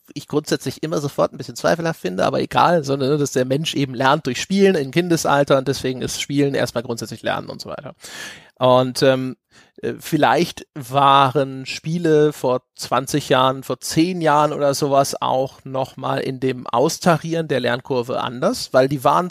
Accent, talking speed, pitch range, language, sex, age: German, 170 wpm, 130-155 Hz, German, male, 30-49